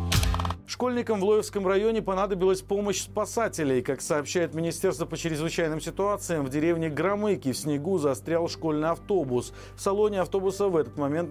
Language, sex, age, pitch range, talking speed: Russian, male, 40-59, 140-185 Hz, 145 wpm